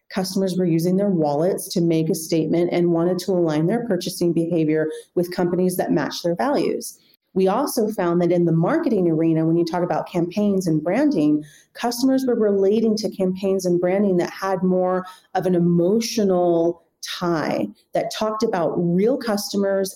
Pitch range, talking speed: 175-205 Hz, 170 wpm